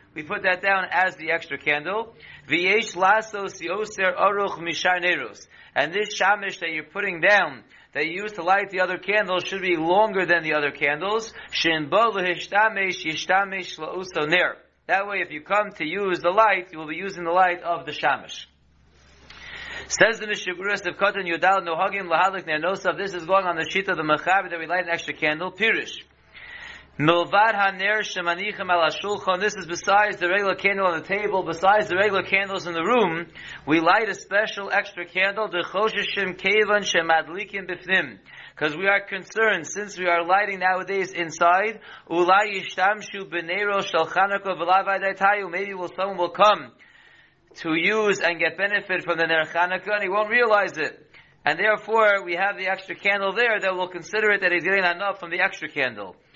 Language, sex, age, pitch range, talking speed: English, male, 30-49, 170-200 Hz, 145 wpm